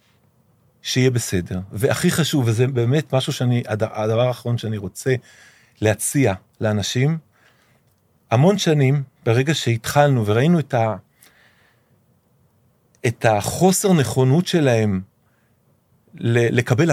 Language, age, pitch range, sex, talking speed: Hebrew, 40-59, 110-140 Hz, male, 90 wpm